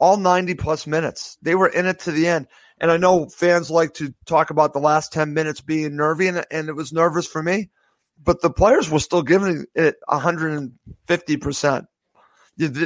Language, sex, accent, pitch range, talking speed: English, male, American, 150-180 Hz, 205 wpm